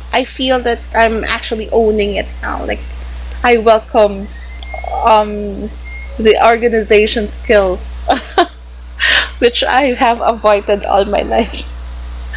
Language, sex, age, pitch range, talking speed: English, female, 20-39, 185-230 Hz, 105 wpm